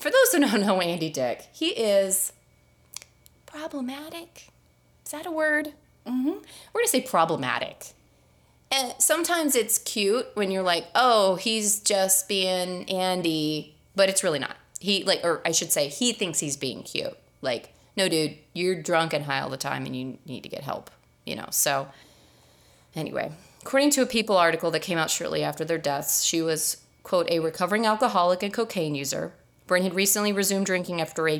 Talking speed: 185 wpm